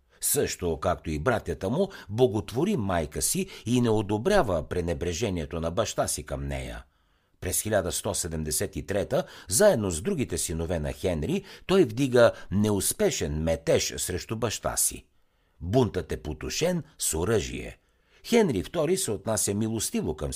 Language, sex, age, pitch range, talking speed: Bulgarian, male, 60-79, 75-120 Hz, 125 wpm